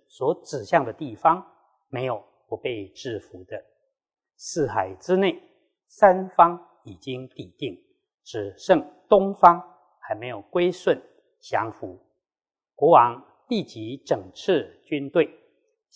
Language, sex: Chinese, male